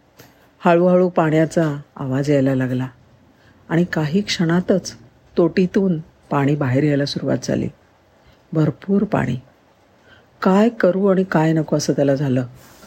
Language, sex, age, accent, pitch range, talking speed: Marathi, female, 50-69, native, 135-170 Hz, 110 wpm